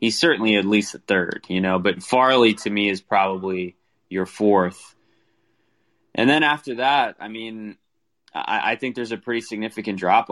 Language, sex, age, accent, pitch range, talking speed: English, male, 20-39, American, 105-120 Hz, 175 wpm